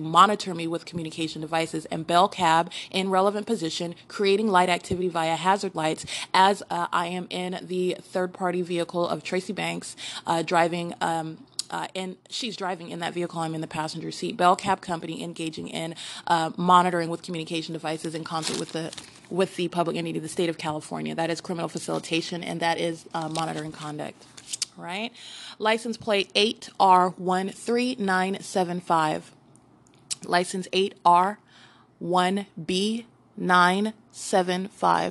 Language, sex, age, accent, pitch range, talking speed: English, female, 20-39, American, 165-190 Hz, 150 wpm